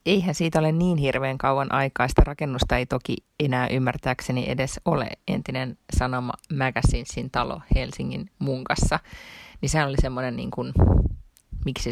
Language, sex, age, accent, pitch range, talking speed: Finnish, female, 30-49, native, 125-150 Hz, 135 wpm